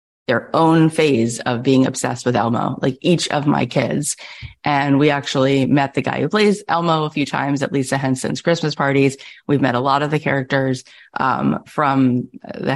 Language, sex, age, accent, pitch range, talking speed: English, female, 30-49, American, 135-165 Hz, 190 wpm